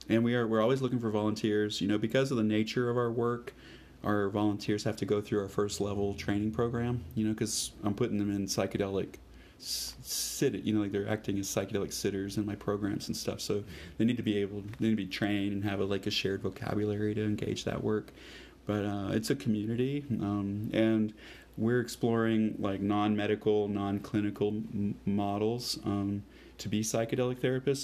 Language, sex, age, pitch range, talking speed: English, male, 30-49, 100-110 Hz, 195 wpm